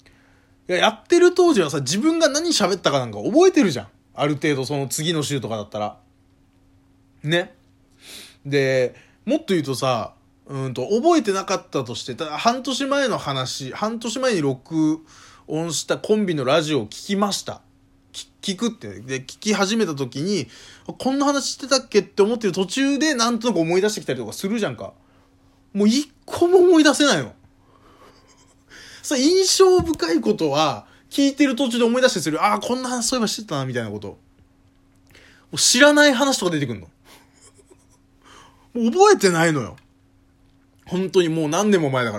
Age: 20-39